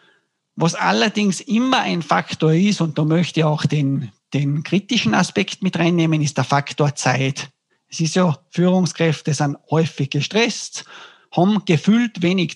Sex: male